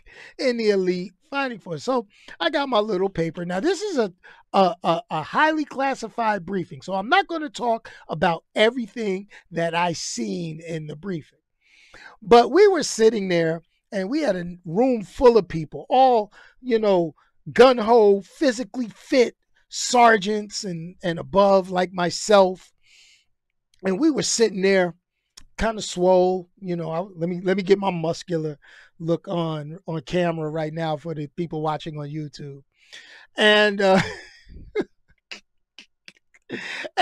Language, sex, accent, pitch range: English, male, American, 170-235 Hz